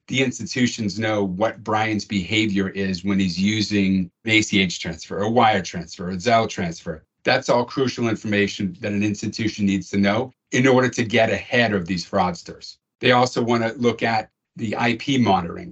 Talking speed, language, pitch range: 175 wpm, English, 100-115 Hz